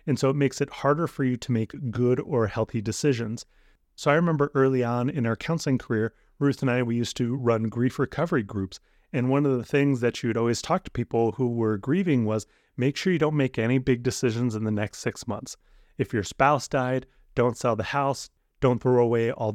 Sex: male